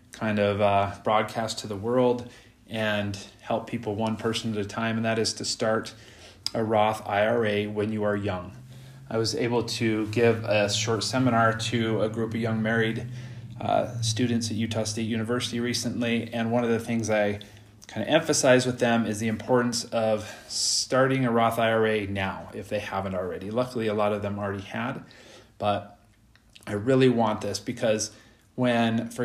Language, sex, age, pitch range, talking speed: English, male, 30-49, 105-120 Hz, 180 wpm